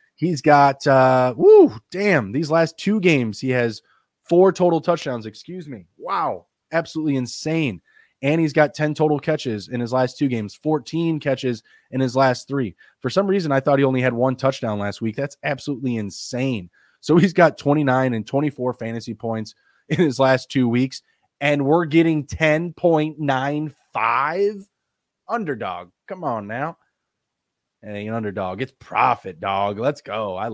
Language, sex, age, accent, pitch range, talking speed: English, male, 20-39, American, 120-160 Hz, 155 wpm